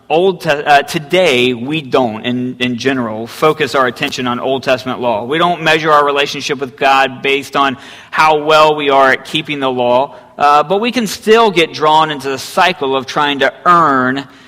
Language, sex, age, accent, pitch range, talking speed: English, male, 40-59, American, 135-175 Hz, 190 wpm